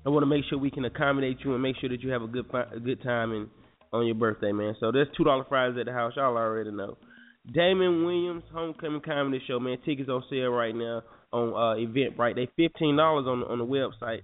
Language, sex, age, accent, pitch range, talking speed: English, male, 20-39, American, 120-150 Hz, 245 wpm